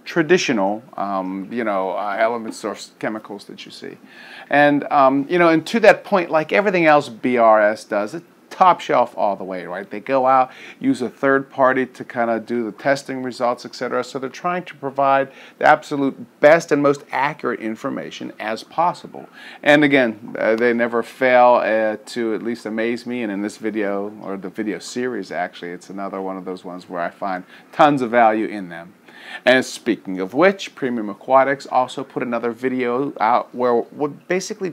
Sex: male